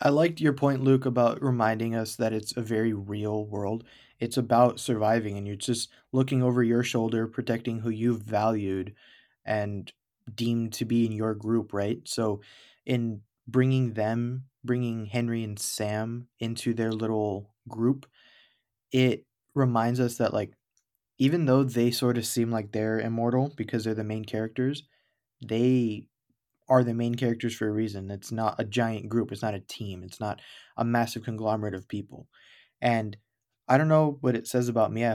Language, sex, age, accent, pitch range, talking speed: English, male, 20-39, American, 110-125 Hz, 175 wpm